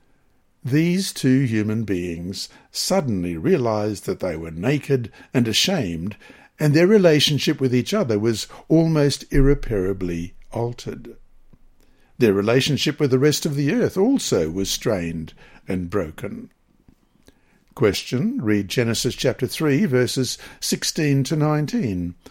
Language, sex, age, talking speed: English, male, 60-79, 120 wpm